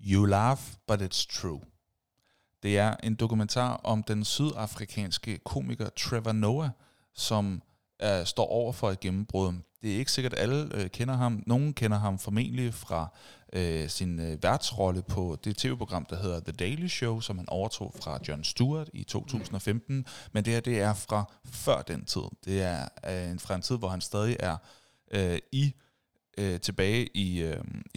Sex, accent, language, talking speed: male, native, Danish, 170 wpm